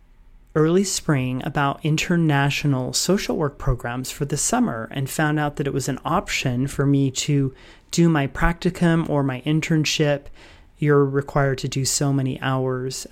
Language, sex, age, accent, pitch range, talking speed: English, male, 30-49, American, 135-170 Hz, 155 wpm